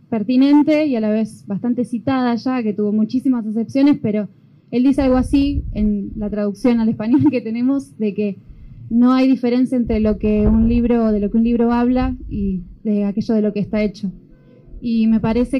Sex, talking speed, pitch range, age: female, 195 wpm, 200-240 Hz, 20-39